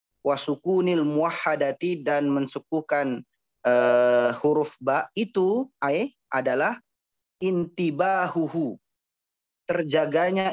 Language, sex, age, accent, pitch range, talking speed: Indonesian, male, 20-39, native, 145-195 Hz, 70 wpm